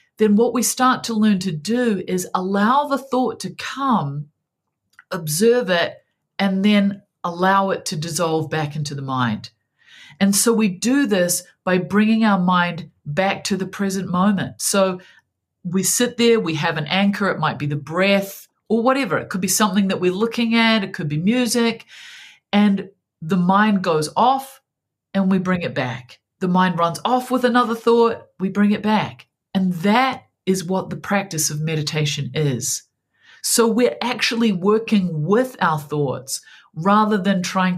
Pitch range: 170-225 Hz